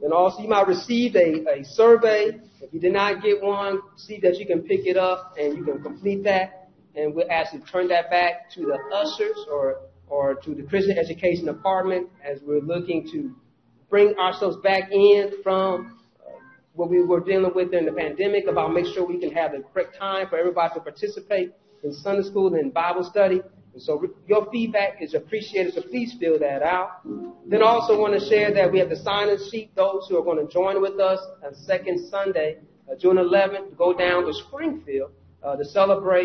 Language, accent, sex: English, American, male